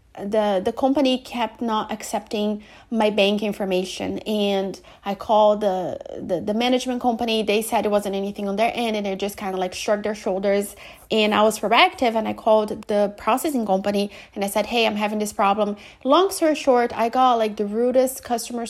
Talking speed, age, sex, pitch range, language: 195 wpm, 30-49, female, 200-230 Hz, English